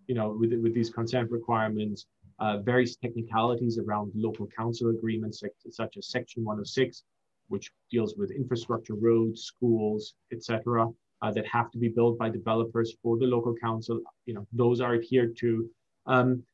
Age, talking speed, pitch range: 30-49, 160 wpm, 115-130 Hz